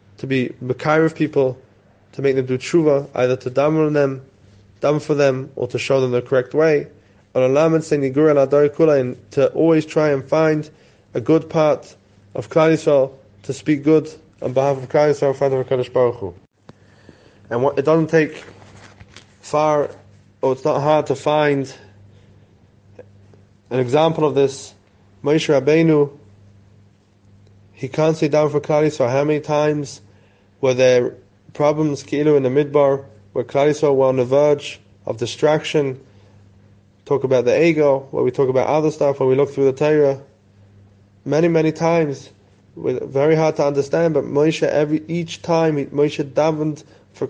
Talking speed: 150 wpm